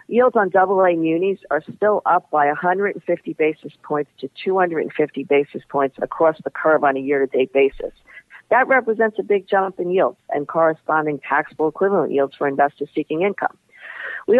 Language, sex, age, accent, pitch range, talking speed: English, female, 50-69, American, 140-190 Hz, 165 wpm